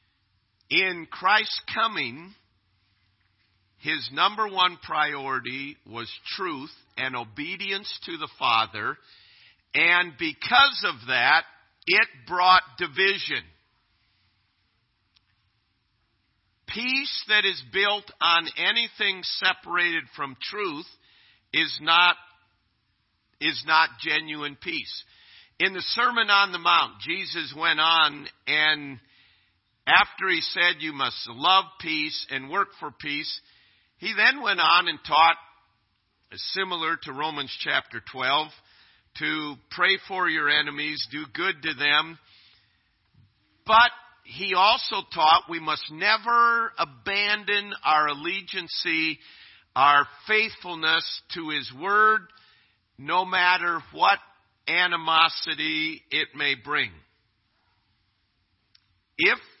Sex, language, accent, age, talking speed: male, English, American, 50-69, 100 wpm